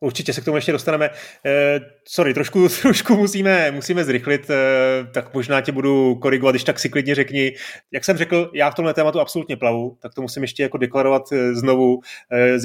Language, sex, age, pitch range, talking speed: Czech, male, 30-49, 125-155 Hz, 185 wpm